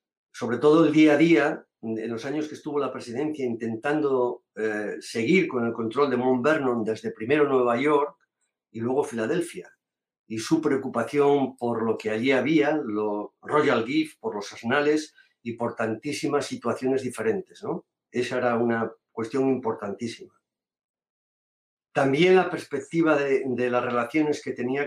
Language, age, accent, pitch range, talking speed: English, 50-69, Spanish, 120-145 Hz, 150 wpm